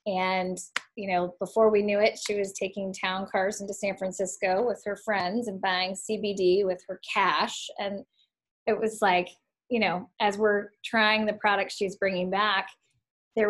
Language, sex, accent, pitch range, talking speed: English, female, American, 190-220 Hz, 175 wpm